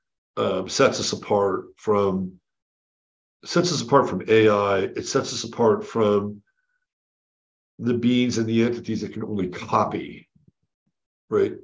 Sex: male